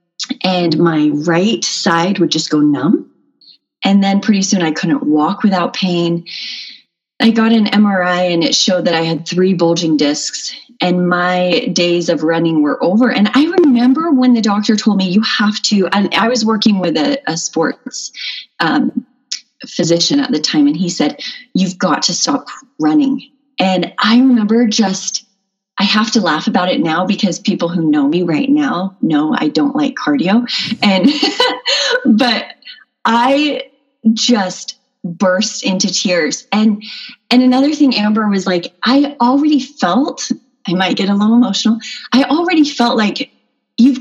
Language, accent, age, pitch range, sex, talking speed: English, American, 30-49, 180-250 Hz, female, 165 wpm